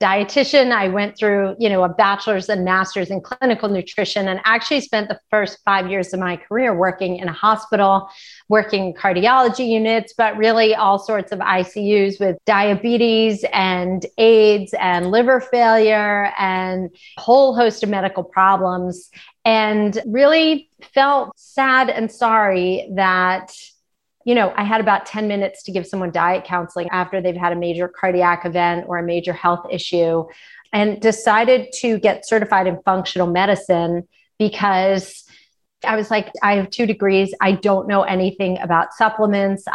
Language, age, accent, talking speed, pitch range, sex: English, 30-49, American, 155 wpm, 180-220 Hz, female